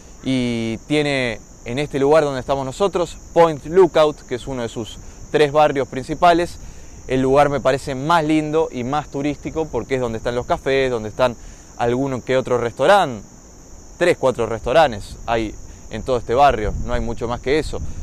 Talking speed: 175 wpm